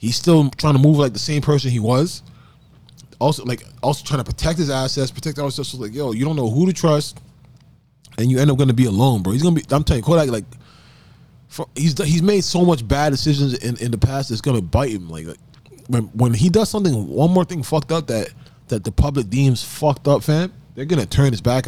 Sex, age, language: male, 20-39, English